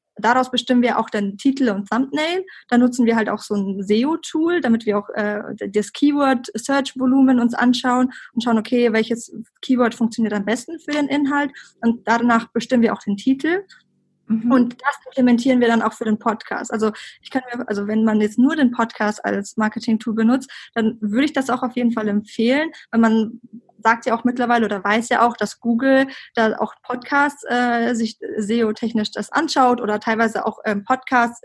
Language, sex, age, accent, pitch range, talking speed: German, female, 20-39, German, 220-255 Hz, 190 wpm